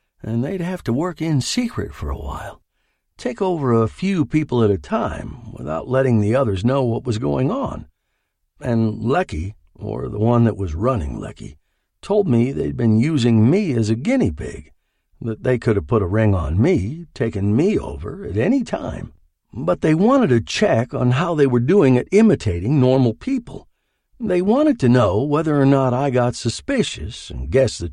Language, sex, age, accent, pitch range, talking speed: English, male, 60-79, American, 110-150 Hz, 190 wpm